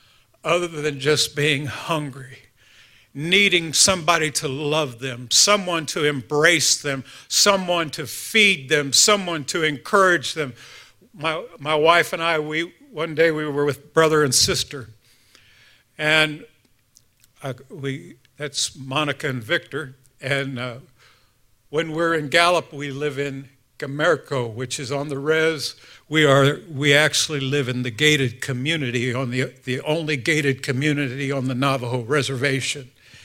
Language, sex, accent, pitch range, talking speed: English, male, American, 125-150 Hz, 140 wpm